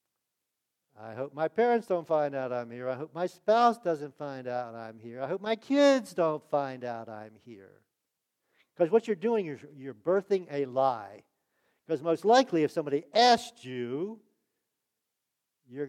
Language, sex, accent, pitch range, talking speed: English, male, American, 140-200 Hz, 165 wpm